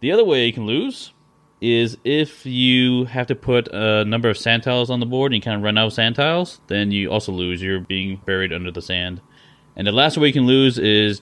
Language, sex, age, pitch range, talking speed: English, male, 20-39, 95-125 Hz, 250 wpm